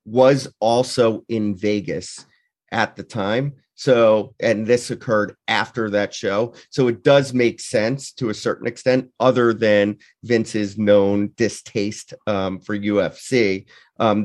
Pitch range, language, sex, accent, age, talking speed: 105-130 Hz, English, male, American, 30-49, 135 wpm